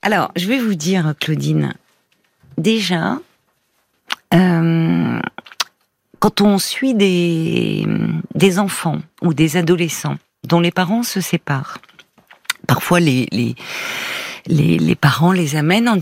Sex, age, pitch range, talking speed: female, 40-59, 170-210 Hz, 115 wpm